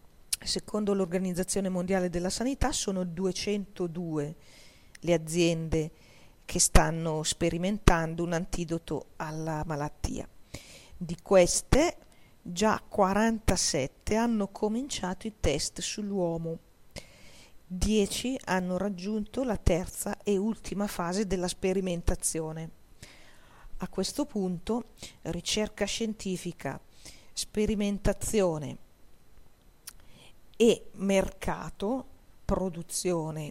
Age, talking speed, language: 40-59, 80 wpm, Italian